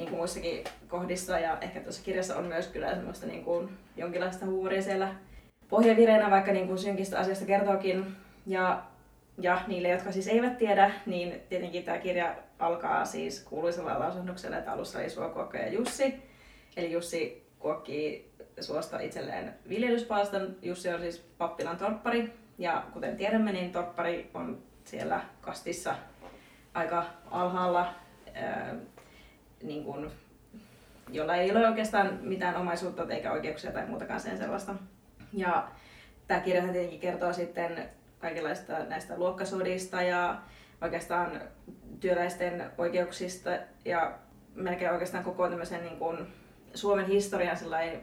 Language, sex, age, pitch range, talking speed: Finnish, female, 20-39, 170-195 Hz, 130 wpm